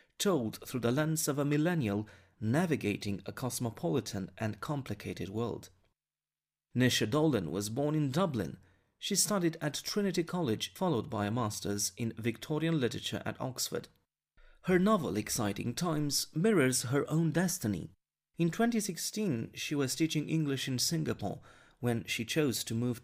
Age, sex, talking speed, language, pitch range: 30-49, male, 140 wpm, English, 115-160 Hz